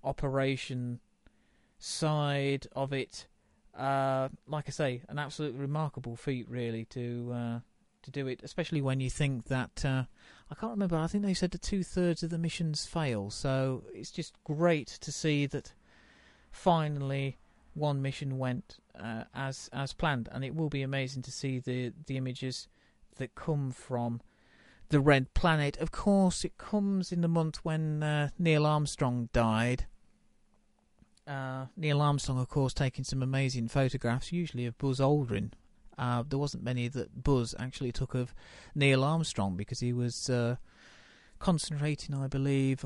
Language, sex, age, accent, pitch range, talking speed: English, male, 40-59, British, 125-150 Hz, 155 wpm